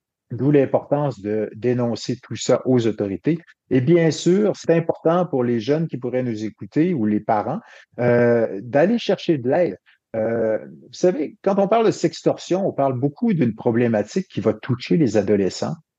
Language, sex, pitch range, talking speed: French, male, 110-145 Hz, 175 wpm